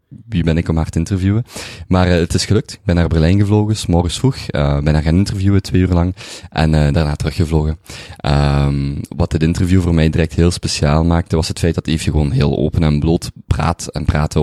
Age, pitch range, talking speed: 20-39, 75-90 Hz, 235 wpm